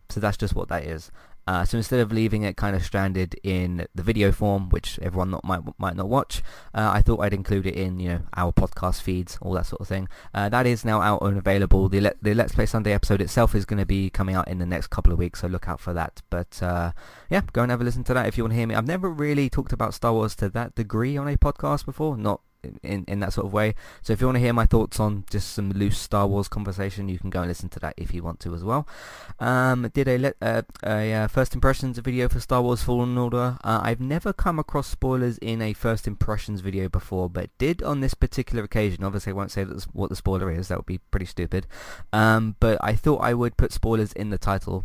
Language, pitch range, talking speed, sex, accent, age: English, 90-115 Hz, 265 wpm, male, British, 20-39